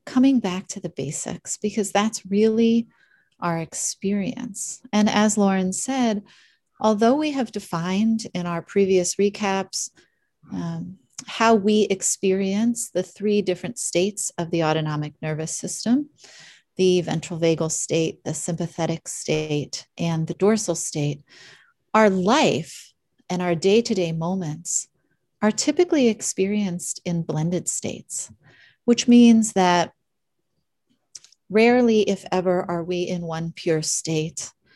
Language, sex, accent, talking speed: English, female, American, 120 wpm